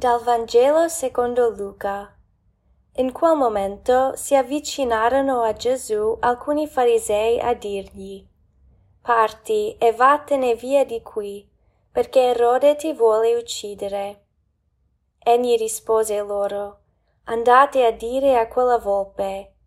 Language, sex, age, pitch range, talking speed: Italian, female, 20-39, 210-255 Hz, 105 wpm